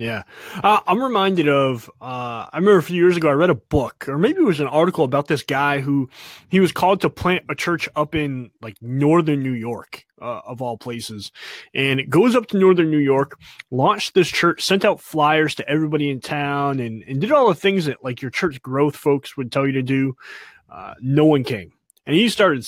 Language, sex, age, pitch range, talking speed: English, male, 30-49, 135-170 Hz, 225 wpm